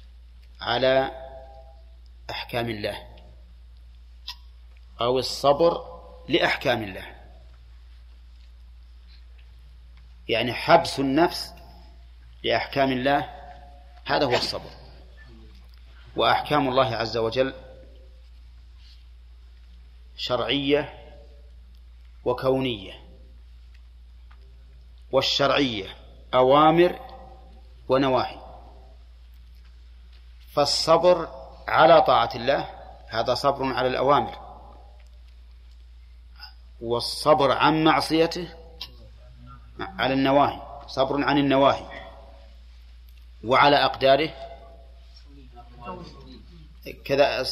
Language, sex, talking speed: Arabic, male, 55 wpm